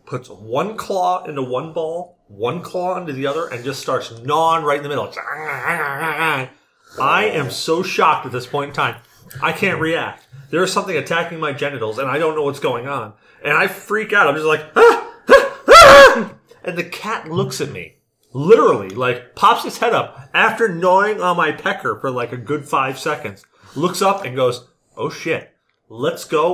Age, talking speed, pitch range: 30-49, 190 wpm, 135-185 Hz